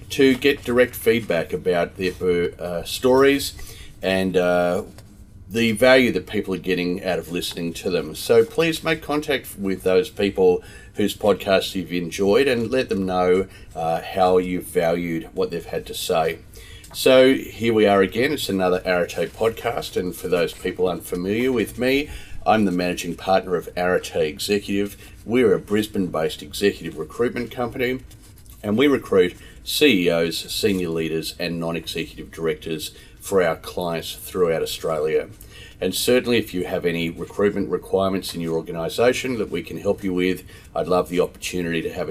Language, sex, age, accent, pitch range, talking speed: English, male, 40-59, Australian, 90-115 Hz, 160 wpm